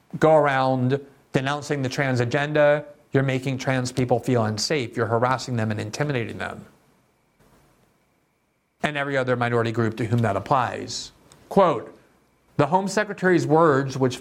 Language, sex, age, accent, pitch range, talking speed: English, male, 50-69, American, 125-155 Hz, 140 wpm